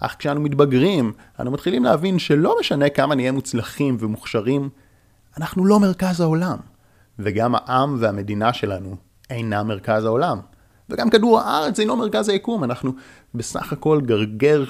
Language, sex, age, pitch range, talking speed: Hebrew, male, 30-49, 105-135 Hz, 140 wpm